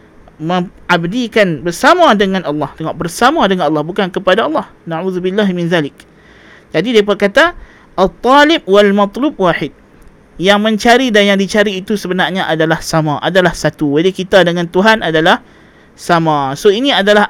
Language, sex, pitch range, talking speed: Malay, male, 175-225 Hz, 140 wpm